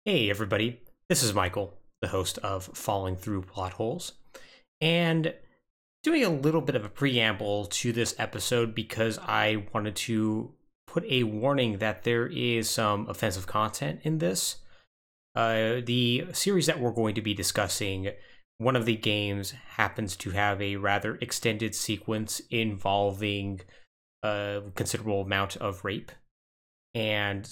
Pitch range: 100-120 Hz